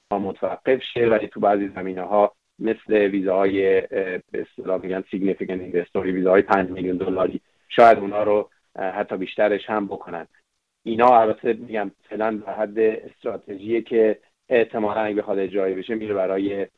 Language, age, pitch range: Persian, 30-49, 100-115 Hz